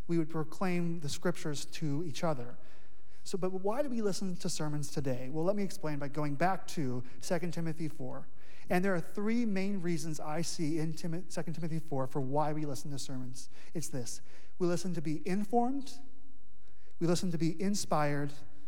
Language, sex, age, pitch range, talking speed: English, male, 30-49, 145-185 Hz, 185 wpm